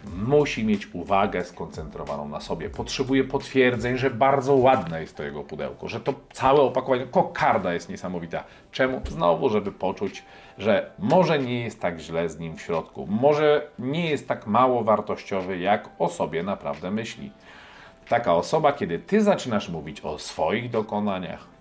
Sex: male